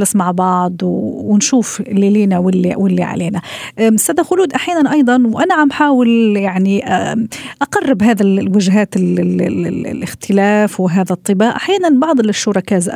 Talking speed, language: 115 wpm, Arabic